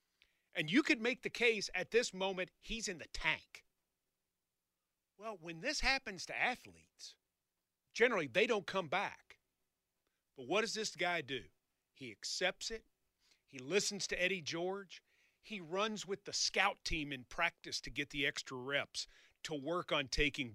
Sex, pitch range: male, 140-210 Hz